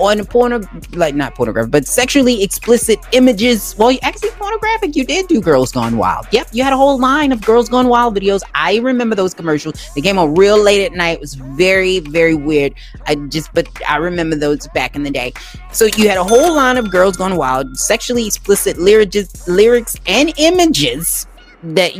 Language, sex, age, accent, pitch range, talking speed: English, female, 30-49, American, 165-250 Hz, 200 wpm